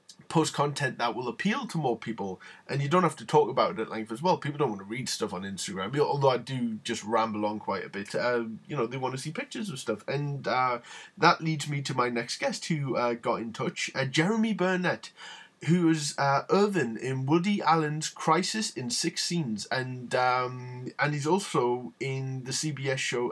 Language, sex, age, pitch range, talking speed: English, male, 20-39, 120-165 Hz, 215 wpm